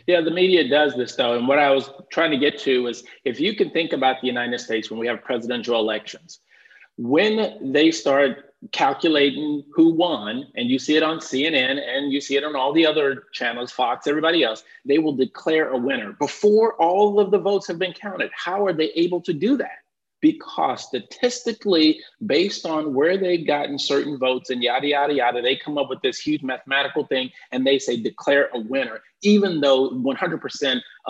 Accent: American